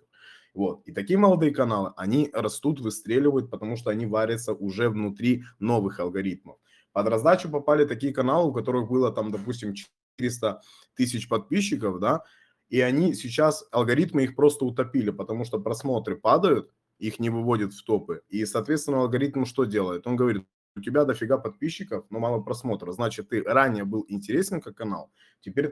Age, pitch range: 20-39, 105-135 Hz